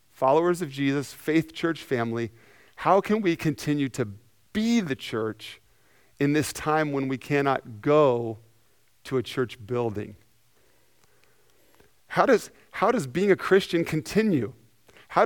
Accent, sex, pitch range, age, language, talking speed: American, male, 125-165 Hz, 40-59, English, 130 wpm